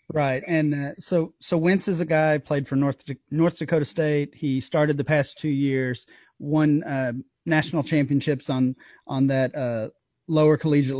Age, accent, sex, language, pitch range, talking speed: 30-49, American, male, English, 130-155 Hz, 170 wpm